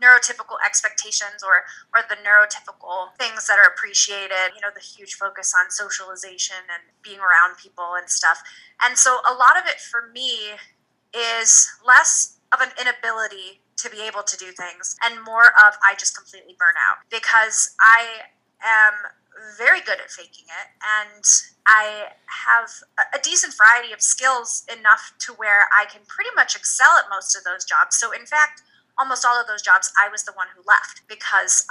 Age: 30-49